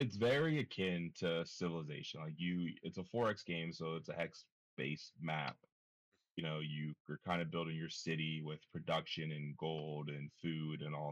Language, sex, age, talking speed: English, male, 20-39, 185 wpm